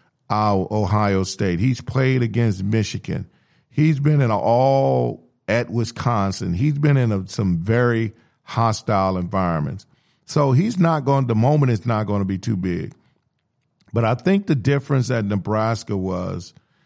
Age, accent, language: 40-59, American, English